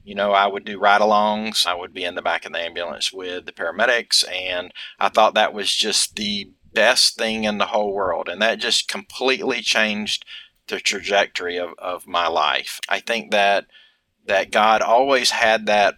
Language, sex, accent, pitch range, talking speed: English, male, American, 95-110 Hz, 190 wpm